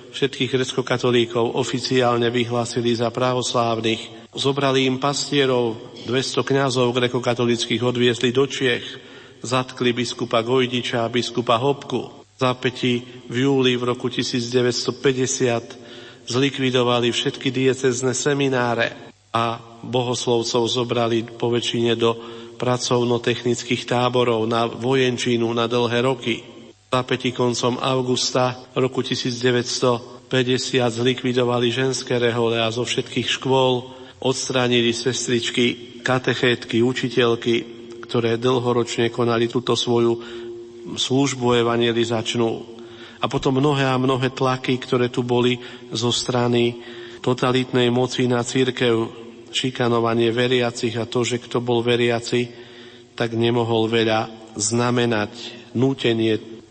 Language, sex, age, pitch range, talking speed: Slovak, male, 50-69, 120-130 Hz, 105 wpm